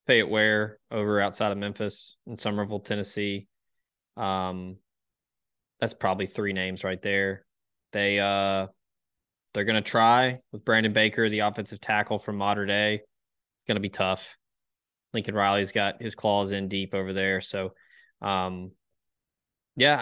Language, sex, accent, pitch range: English, male, American, 100-115 Hz